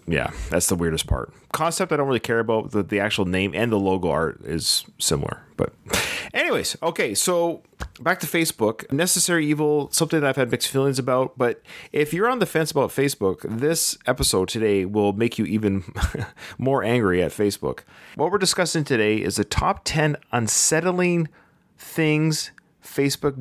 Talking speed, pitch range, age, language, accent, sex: 170 wpm, 105-150 Hz, 30-49, English, American, male